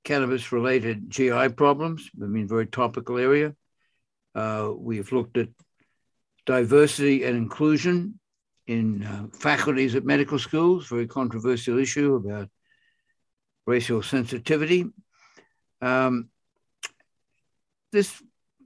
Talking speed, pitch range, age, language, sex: 95 wpm, 115-150 Hz, 60-79, English, male